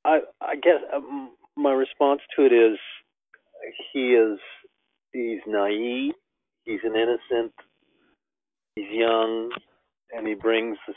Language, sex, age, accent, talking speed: English, male, 50-69, American, 120 wpm